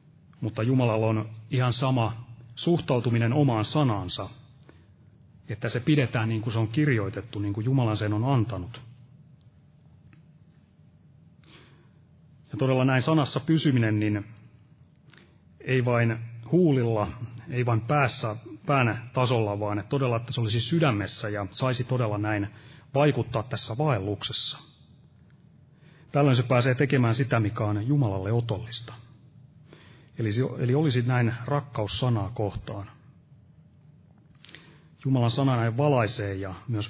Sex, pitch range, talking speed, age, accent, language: male, 115-145 Hz, 115 wpm, 30-49, native, Finnish